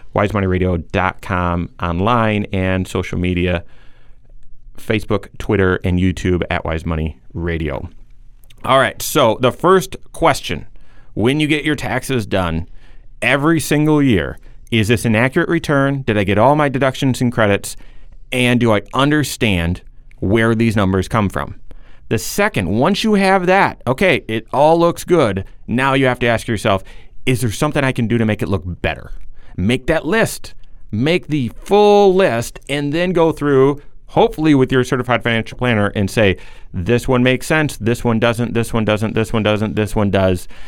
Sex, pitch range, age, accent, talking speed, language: male, 100-130 Hz, 30-49, American, 165 wpm, English